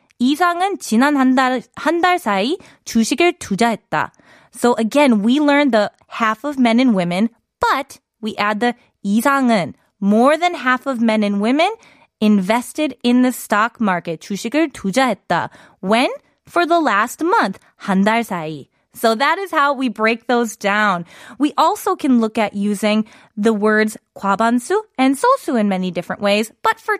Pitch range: 200-285 Hz